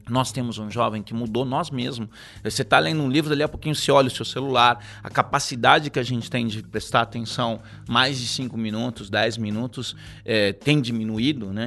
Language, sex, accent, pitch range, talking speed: Portuguese, male, Brazilian, 110-135 Hz, 205 wpm